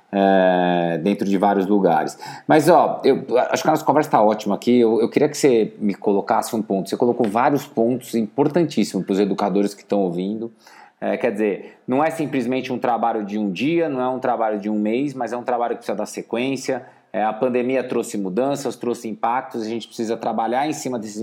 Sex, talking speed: male, 215 wpm